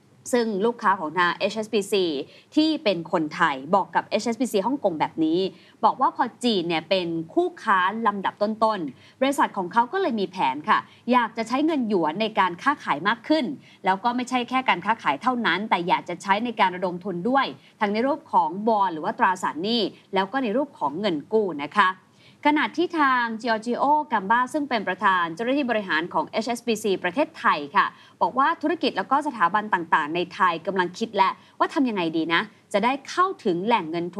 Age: 20-39